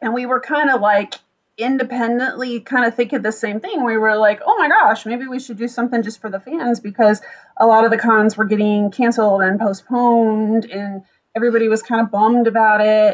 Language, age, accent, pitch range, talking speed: English, 30-49, American, 205-245 Hz, 215 wpm